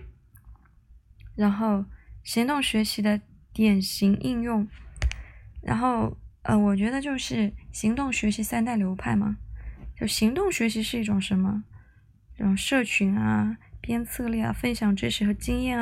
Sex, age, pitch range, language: female, 20-39, 195-230 Hz, Chinese